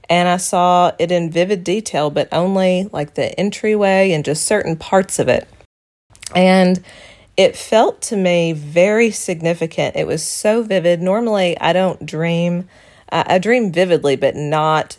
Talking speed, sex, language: 155 wpm, female, English